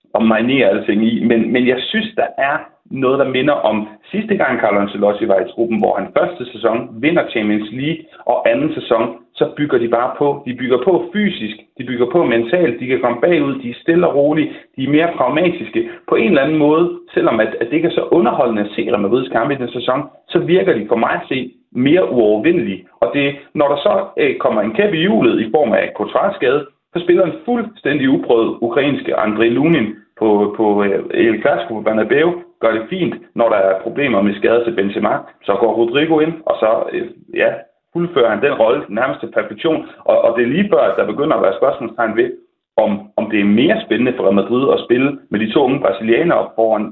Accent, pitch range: native, 110-175 Hz